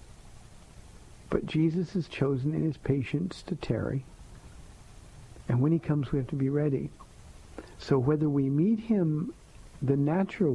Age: 50-69